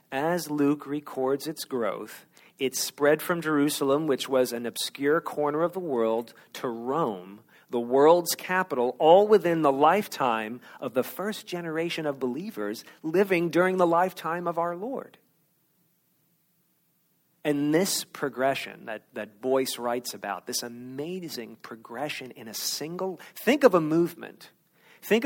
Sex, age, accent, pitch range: male, 40-59, American, 125-170 Hz